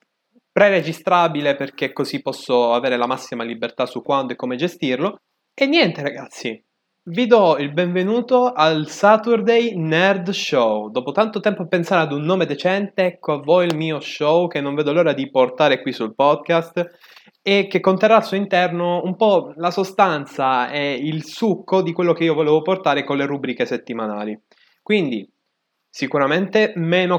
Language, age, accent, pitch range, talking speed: Italian, 20-39, native, 125-185 Hz, 165 wpm